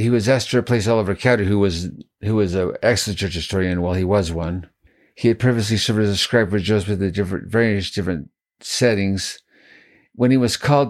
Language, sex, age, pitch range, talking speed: English, male, 50-69, 95-115 Hz, 210 wpm